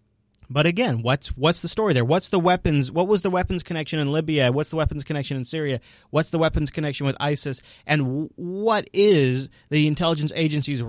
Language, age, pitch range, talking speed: English, 30-49, 130-190 Hz, 200 wpm